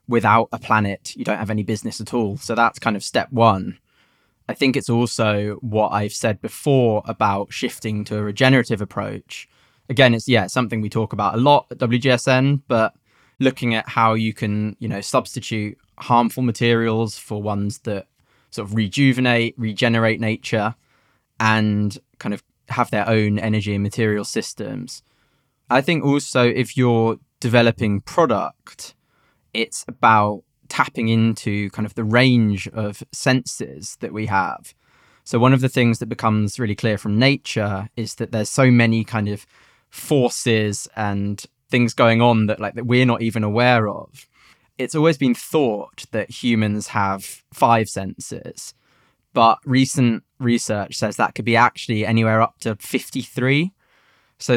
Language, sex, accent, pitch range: English, male, British, 110-125 Hz